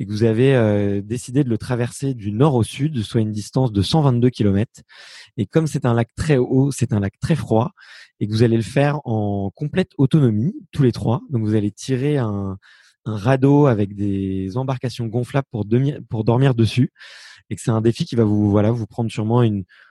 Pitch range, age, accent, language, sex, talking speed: 105-135 Hz, 20-39, French, French, male, 215 wpm